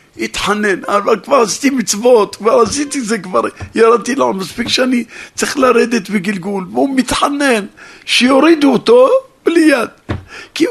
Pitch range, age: 170-270 Hz, 50-69